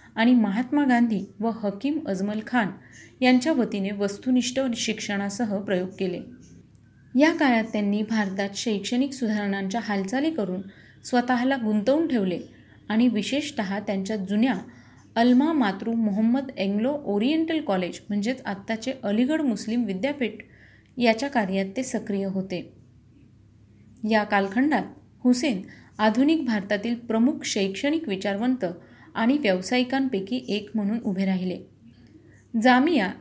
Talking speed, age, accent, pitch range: 105 wpm, 30-49, native, 200-255 Hz